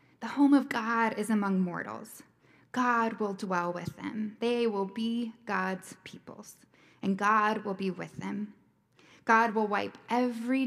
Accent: American